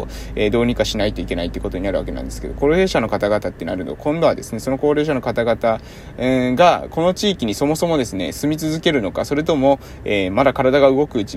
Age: 20-39